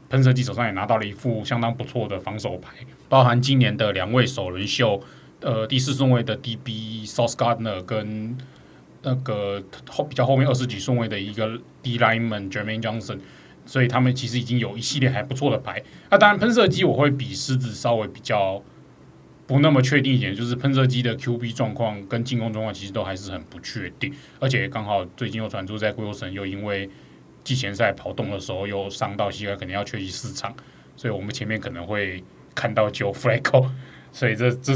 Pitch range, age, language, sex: 110-135 Hz, 20-39, Chinese, male